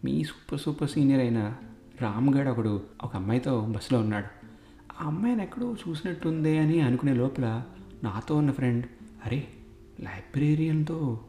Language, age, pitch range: Telugu, 30-49, 110-135 Hz